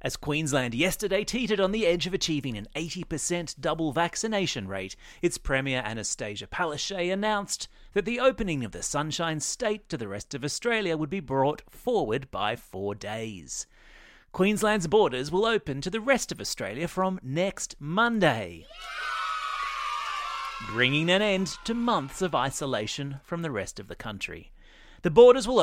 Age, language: 30-49, English